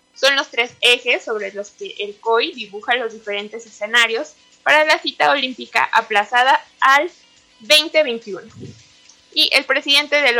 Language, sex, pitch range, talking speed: Spanish, female, 220-290 Hz, 140 wpm